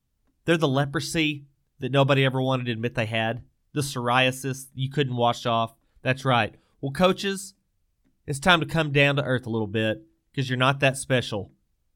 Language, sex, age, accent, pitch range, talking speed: English, male, 30-49, American, 110-145 Hz, 180 wpm